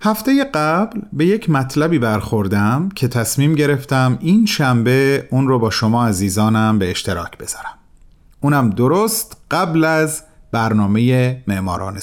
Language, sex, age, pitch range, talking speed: Persian, male, 40-59, 110-155 Hz, 125 wpm